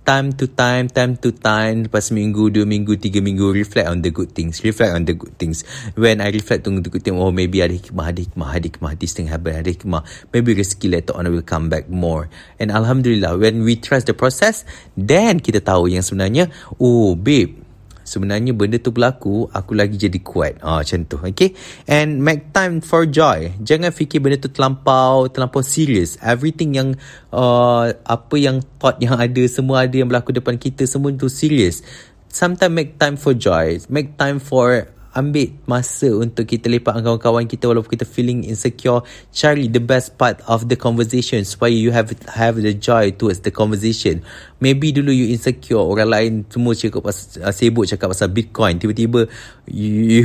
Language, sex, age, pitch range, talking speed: English, male, 30-49, 100-130 Hz, 185 wpm